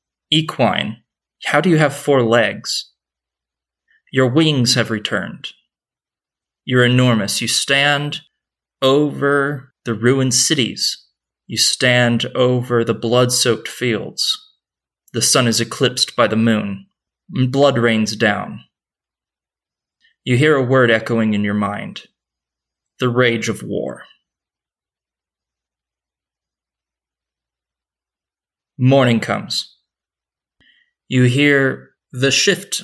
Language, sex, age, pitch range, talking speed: English, male, 20-39, 110-135 Hz, 95 wpm